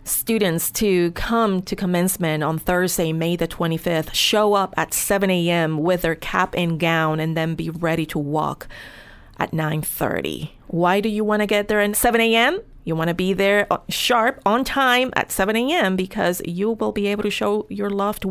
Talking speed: 190 wpm